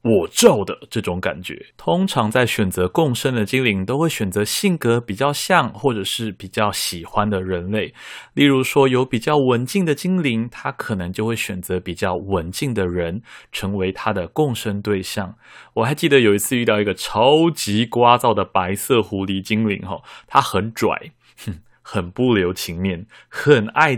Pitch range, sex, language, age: 100-135 Hz, male, Chinese, 20-39